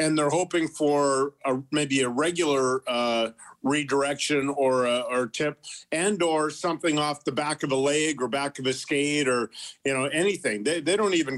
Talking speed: 190 wpm